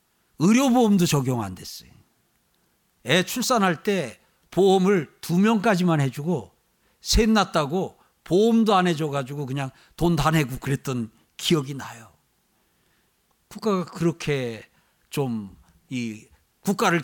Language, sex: Korean, male